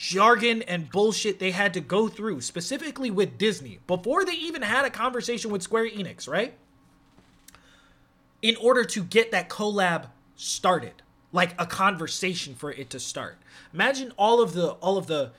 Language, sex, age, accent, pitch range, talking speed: English, male, 20-39, American, 165-225 Hz, 165 wpm